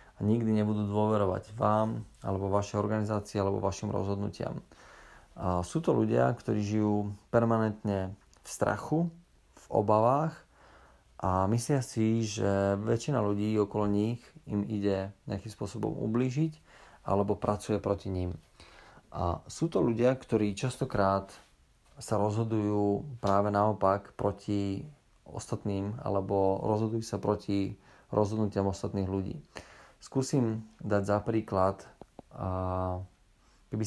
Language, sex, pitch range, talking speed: Slovak, male, 100-115 Hz, 110 wpm